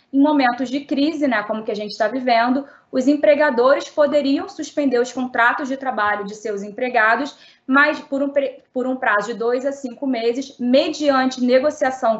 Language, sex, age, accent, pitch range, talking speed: Portuguese, female, 20-39, Brazilian, 235-290 Hz, 170 wpm